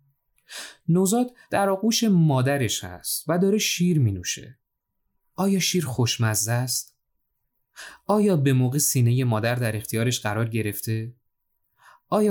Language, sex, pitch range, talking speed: Persian, male, 115-150 Hz, 110 wpm